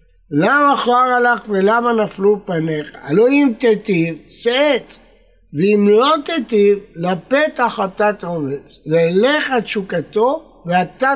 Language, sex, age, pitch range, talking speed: Hebrew, male, 60-79, 175-245 Hz, 110 wpm